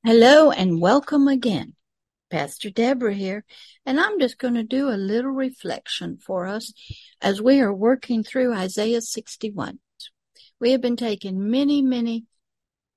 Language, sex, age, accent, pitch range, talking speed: English, female, 60-79, American, 190-250 Hz, 145 wpm